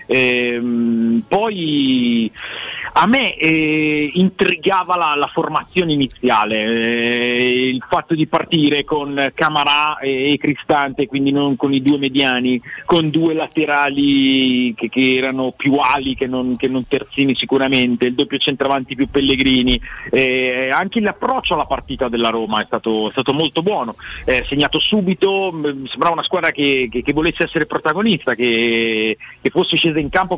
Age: 40-59